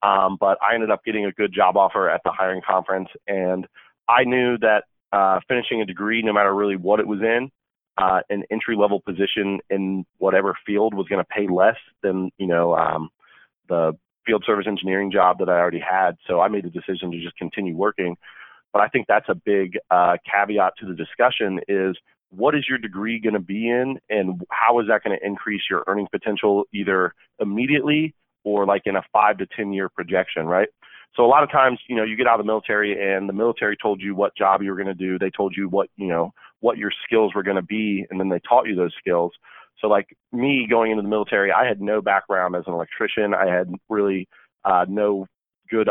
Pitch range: 95-105 Hz